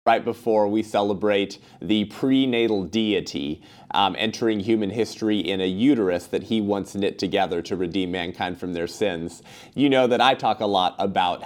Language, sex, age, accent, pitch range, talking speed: English, male, 30-49, American, 100-125 Hz, 175 wpm